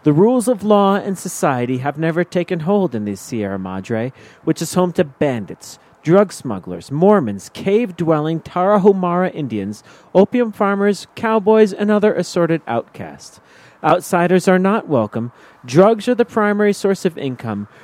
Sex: male